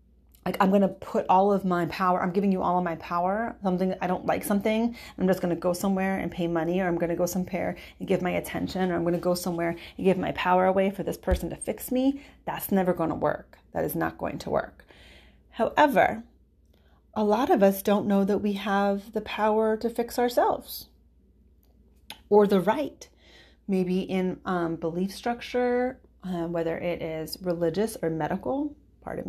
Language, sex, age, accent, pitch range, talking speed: English, female, 30-49, American, 170-220 Hz, 205 wpm